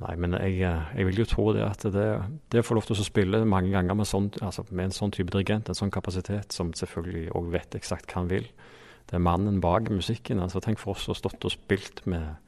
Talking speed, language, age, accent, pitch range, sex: 240 wpm, English, 30-49, Norwegian, 95-110 Hz, male